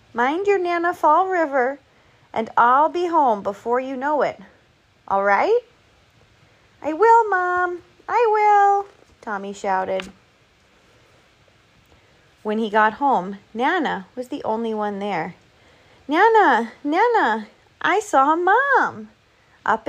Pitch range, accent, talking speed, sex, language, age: 190-255 Hz, American, 115 wpm, female, English, 30-49